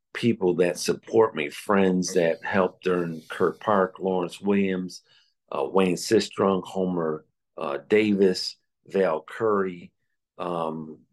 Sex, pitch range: male, 80-95 Hz